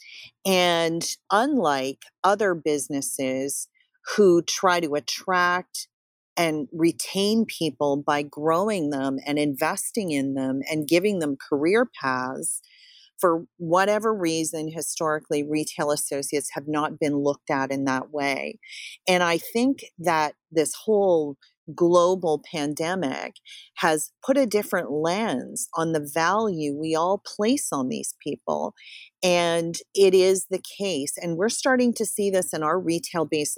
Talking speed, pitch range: 130 wpm, 150-195 Hz